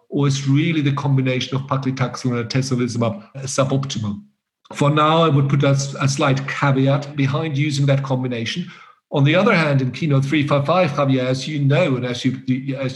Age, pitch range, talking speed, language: 50-69, 125-150 Hz, 175 wpm, English